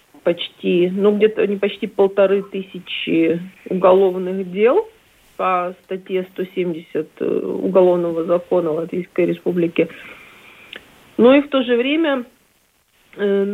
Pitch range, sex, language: 180-220 Hz, female, Russian